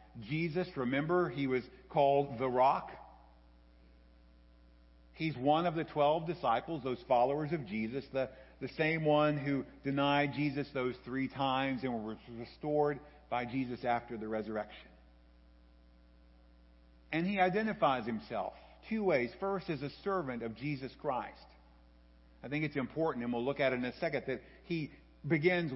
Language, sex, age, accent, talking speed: English, male, 50-69, American, 145 wpm